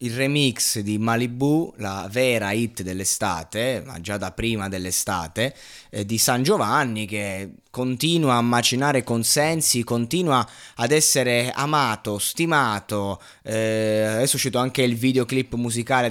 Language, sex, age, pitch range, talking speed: Italian, male, 20-39, 110-135 Hz, 130 wpm